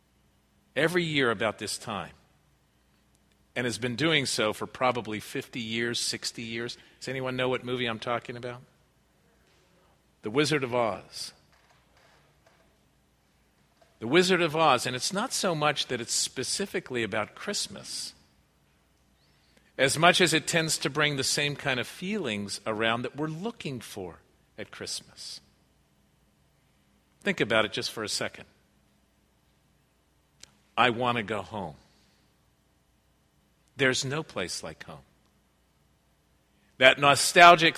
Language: English